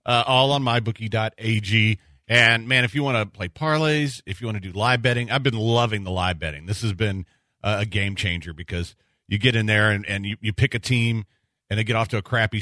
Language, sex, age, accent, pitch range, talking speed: English, male, 40-59, American, 95-125 Hz, 240 wpm